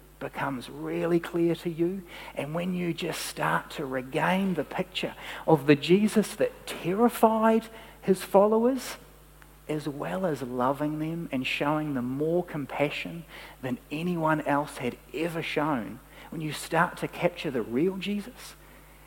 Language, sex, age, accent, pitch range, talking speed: English, male, 40-59, Australian, 145-175 Hz, 140 wpm